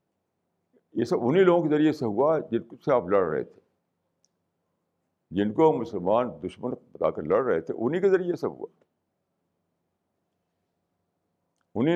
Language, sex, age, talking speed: Urdu, male, 60-79, 145 wpm